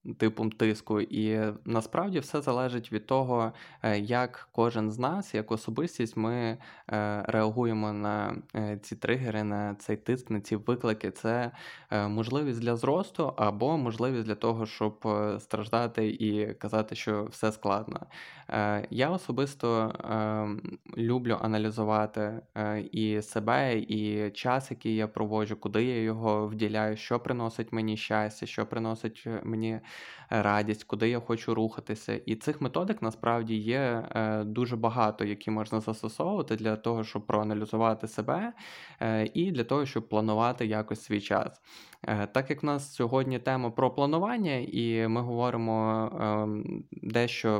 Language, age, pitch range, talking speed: Ukrainian, 20-39, 110-120 Hz, 130 wpm